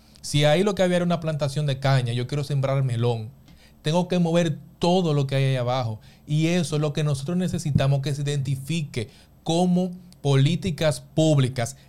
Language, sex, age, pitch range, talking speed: Spanish, male, 30-49, 135-170 Hz, 180 wpm